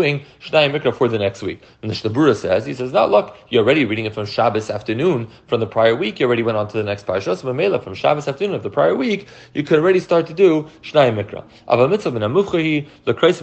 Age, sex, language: 30-49, male, English